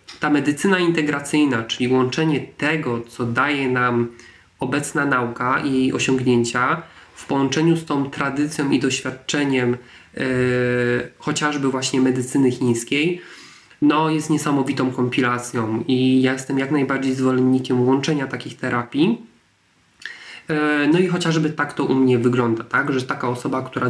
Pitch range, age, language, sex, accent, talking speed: 125-145 Hz, 20-39, Polish, male, native, 135 wpm